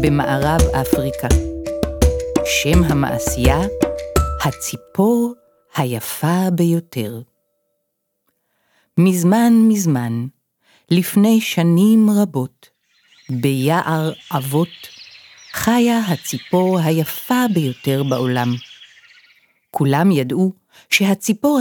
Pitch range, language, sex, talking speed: 140-190 Hz, Hebrew, female, 60 wpm